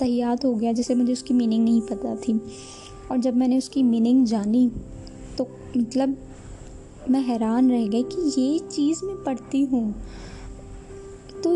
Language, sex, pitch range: Urdu, female, 240-285 Hz